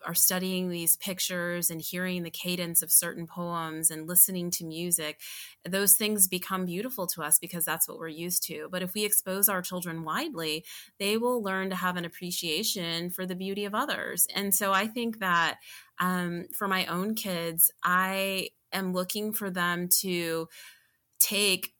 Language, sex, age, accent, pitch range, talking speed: English, female, 20-39, American, 170-200 Hz, 175 wpm